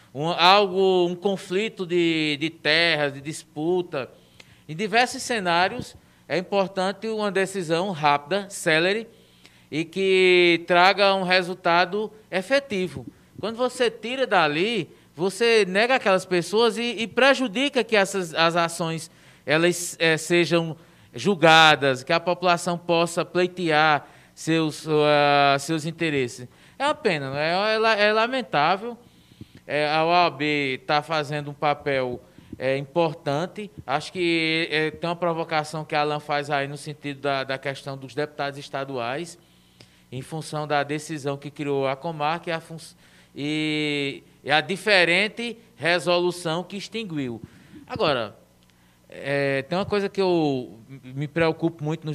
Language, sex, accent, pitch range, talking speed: Portuguese, male, Brazilian, 145-185 Hz, 135 wpm